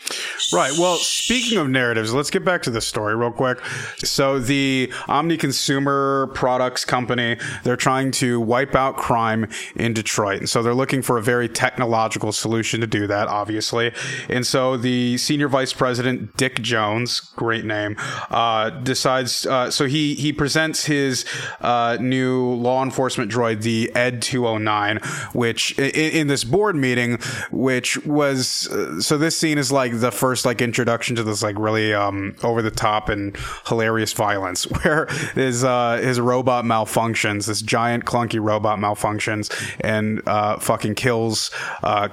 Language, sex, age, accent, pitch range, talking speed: English, male, 30-49, American, 110-130 Hz, 160 wpm